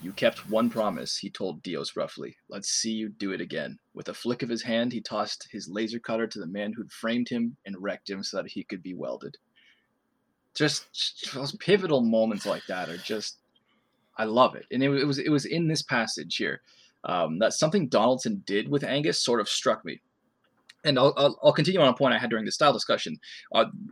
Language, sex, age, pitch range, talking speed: English, male, 20-39, 110-145 Hz, 220 wpm